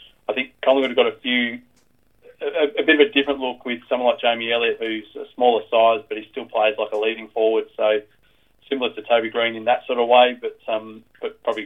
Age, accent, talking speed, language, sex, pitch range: 20-39, Australian, 230 wpm, English, male, 110-125 Hz